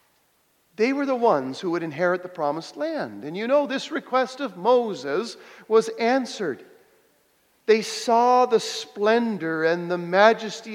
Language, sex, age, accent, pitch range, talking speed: English, male, 50-69, American, 175-225 Hz, 145 wpm